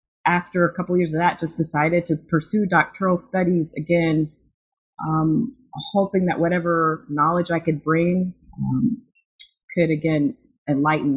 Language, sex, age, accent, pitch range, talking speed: English, female, 30-49, American, 145-175 Hz, 140 wpm